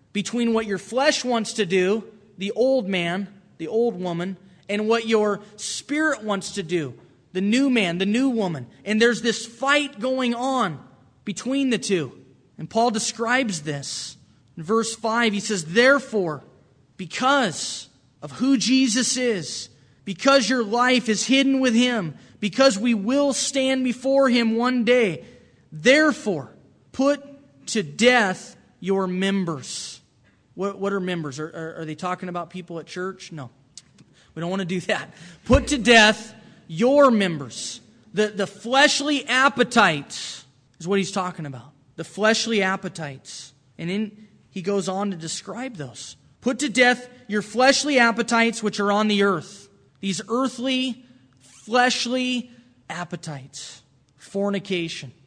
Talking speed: 145 wpm